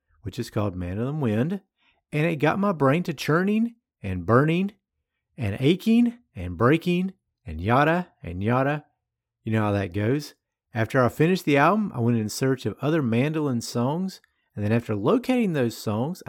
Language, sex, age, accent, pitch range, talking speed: English, male, 50-69, American, 110-160 Hz, 170 wpm